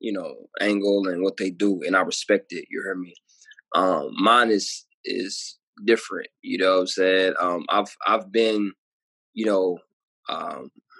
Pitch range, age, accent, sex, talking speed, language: 100-120 Hz, 20-39, American, male, 170 wpm, English